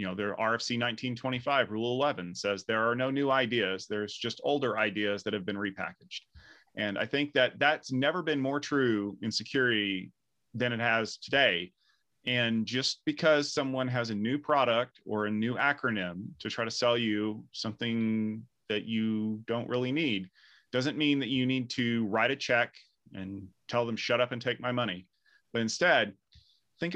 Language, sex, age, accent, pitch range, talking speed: English, male, 30-49, American, 110-140 Hz, 180 wpm